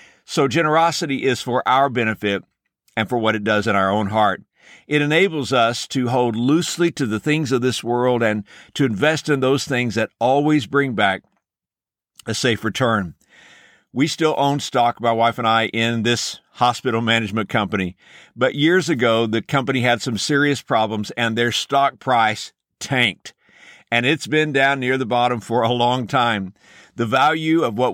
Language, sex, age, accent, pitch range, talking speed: English, male, 60-79, American, 115-145 Hz, 175 wpm